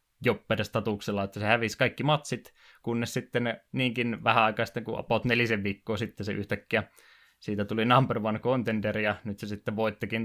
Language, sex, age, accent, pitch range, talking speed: Finnish, male, 20-39, native, 105-115 Hz, 170 wpm